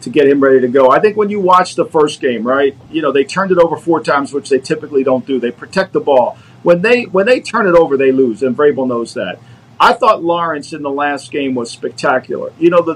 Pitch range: 145-200 Hz